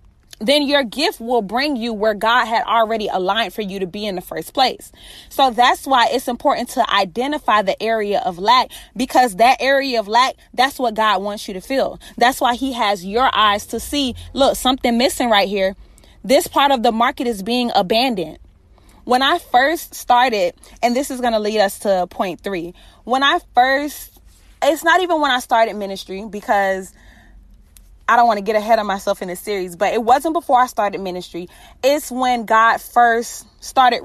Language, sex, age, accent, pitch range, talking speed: English, female, 20-39, American, 210-265 Hz, 195 wpm